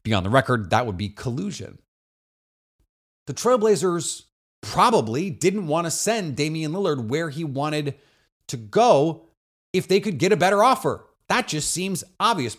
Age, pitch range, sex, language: 30-49, 110-160 Hz, male, English